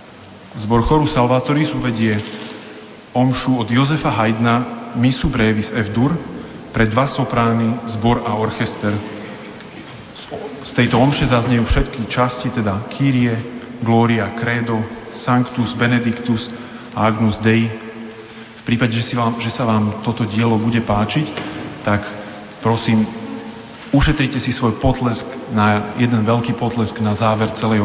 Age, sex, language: 40-59, male, Slovak